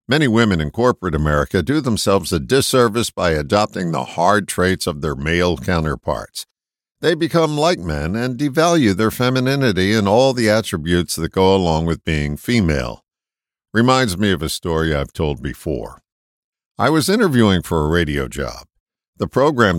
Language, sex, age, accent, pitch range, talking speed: English, male, 50-69, American, 80-115 Hz, 160 wpm